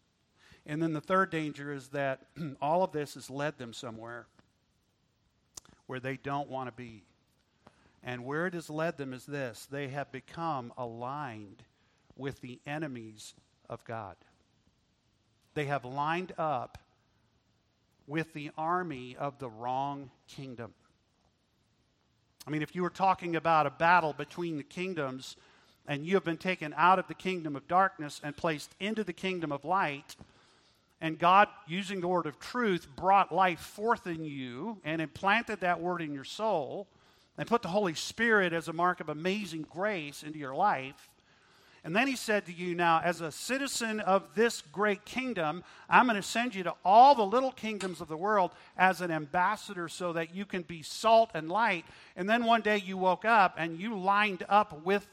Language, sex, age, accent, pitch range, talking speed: English, male, 50-69, American, 140-190 Hz, 175 wpm